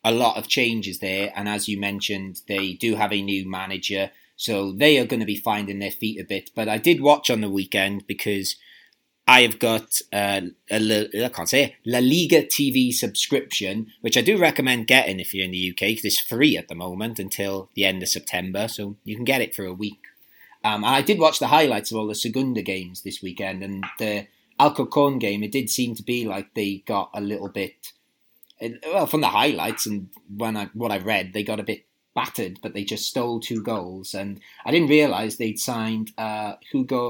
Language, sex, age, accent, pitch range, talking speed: English, male, 30-49, British, 95-120 Hz, 220 wpm